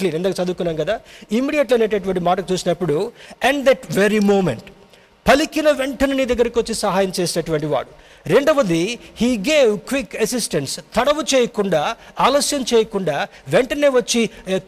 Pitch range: 190-245 Hz